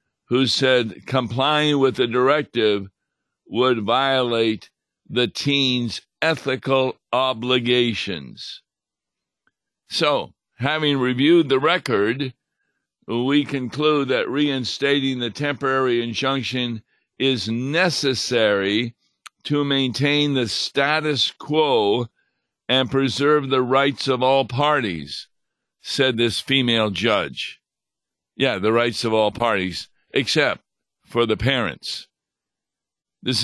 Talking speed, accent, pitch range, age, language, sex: 95 wpm, American, 115-135 Hz, 50-69, English, male